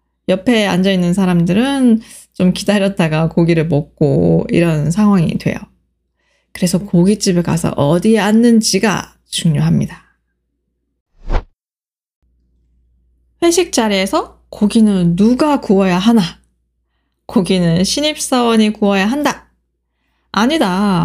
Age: 20-39